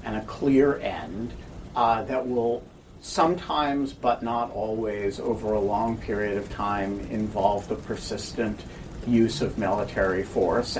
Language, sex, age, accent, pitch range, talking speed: English, male, 50-69, American, 105-130 Hz, 135 wpm